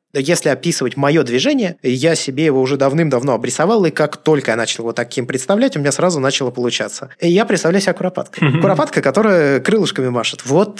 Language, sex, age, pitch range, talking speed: Russian, male, 20-39, 125-170 Hz, 185 wpm